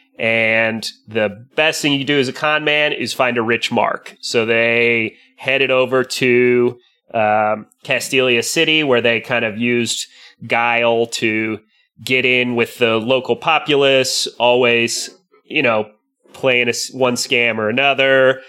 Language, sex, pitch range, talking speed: English, male, 115-130 Hz, 145 wpm